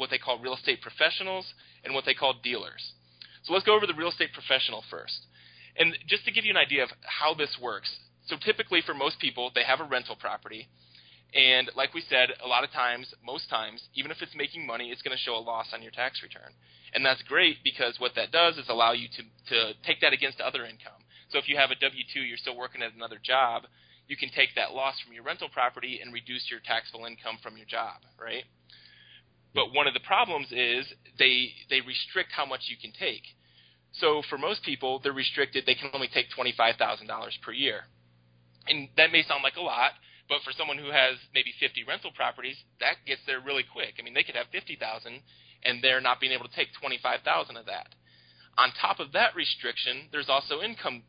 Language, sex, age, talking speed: English, male, 20-39, 215 wpm